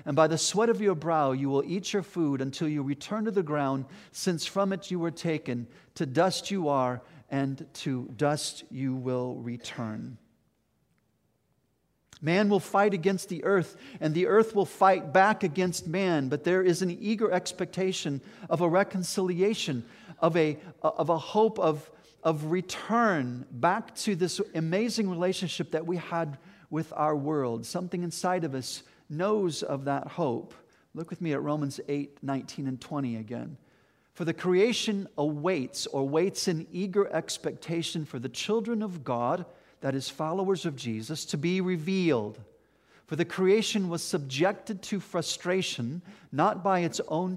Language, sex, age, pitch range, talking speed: English, male, 50-69, 145-190 Hz, 160 wpm